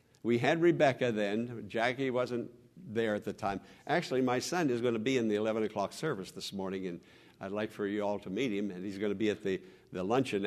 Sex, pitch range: male, 105-140 Hz